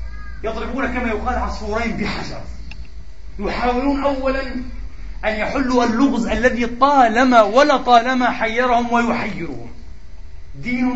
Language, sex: Arabic, male